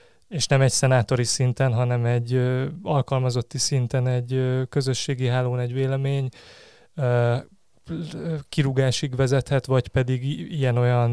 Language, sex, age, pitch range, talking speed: Hungarian, male, 20-39, 125-140 Hz, 115 wpm